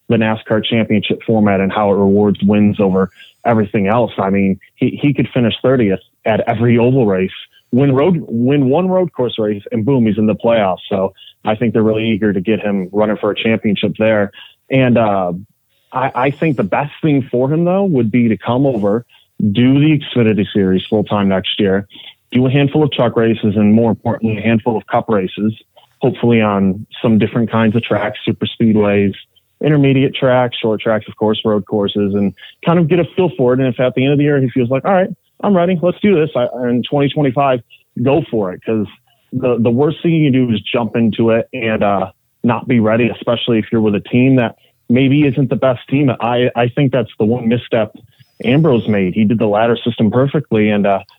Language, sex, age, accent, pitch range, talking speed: English, male, 30-49, American, 105-135 Hz, 210 wpm